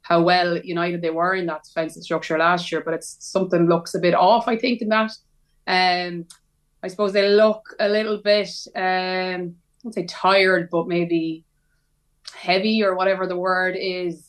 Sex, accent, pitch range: female, Irish, 165-185 Hz